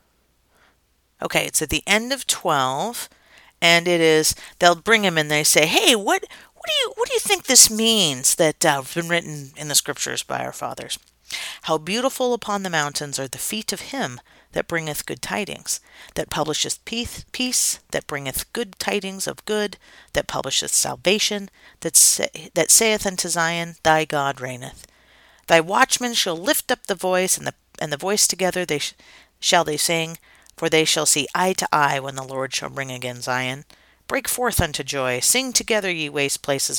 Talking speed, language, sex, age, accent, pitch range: 185 wpm, English, female, 40-59, American, 150-215 Hz